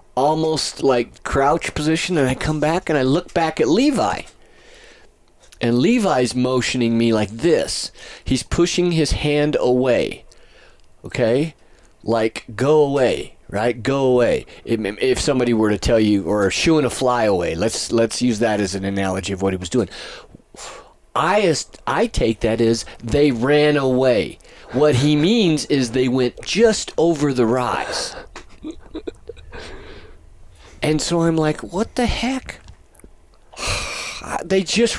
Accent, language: American, English